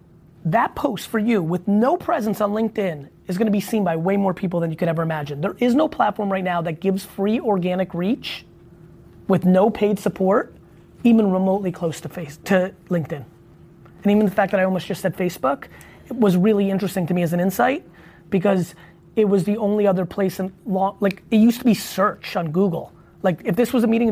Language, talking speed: English, 215 wpm